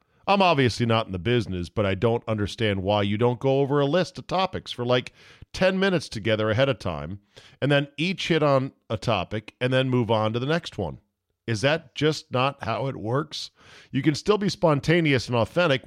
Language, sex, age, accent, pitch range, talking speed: English, male, 40-59, American, 105-140 Hz, 210 wpm